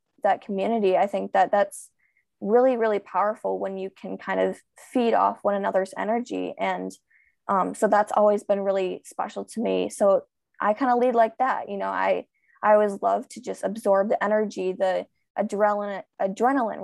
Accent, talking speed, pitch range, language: American, 180 wpm, 190-225 Hz, English